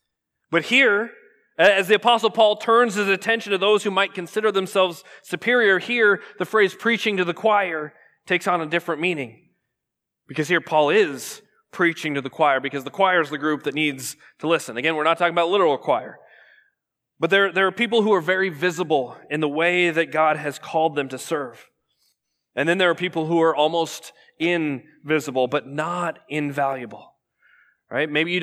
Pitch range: 150-190 Hz